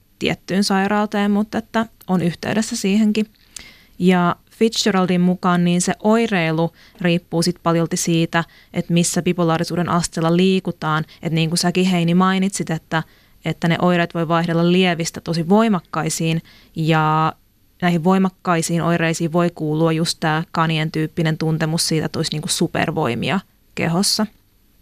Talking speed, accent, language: 135 wpm, native, Finnish